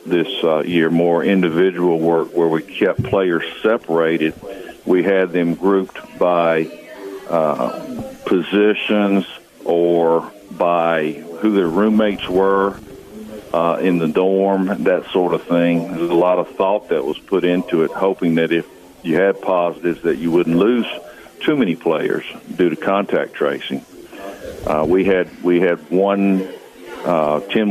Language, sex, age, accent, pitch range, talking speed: English, male, 60-79, American, 80-95 Hz, 145 wpm